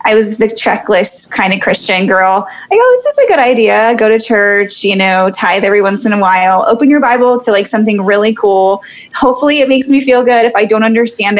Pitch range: 205-240 Hz